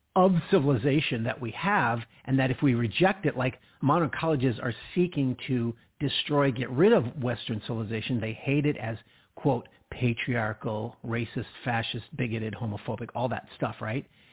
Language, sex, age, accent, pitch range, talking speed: English, male, 50-69, American, 125-165 Hz, 155 wpm